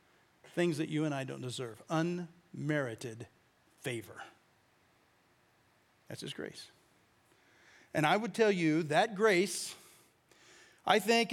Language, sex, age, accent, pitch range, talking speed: English, male, 40-59, American, 170-235 Hz, 110 wpm